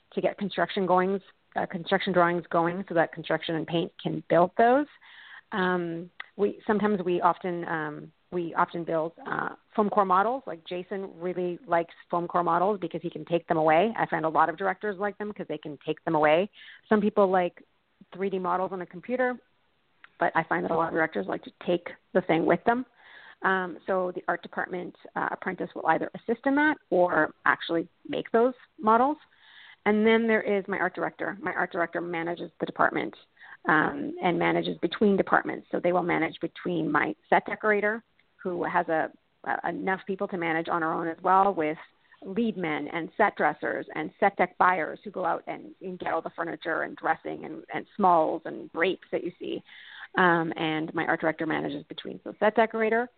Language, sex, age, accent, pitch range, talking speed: English, female, 40-59, American, 165-200 Hz, 195 wpm